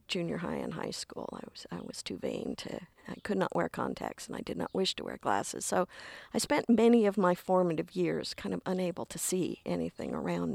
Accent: American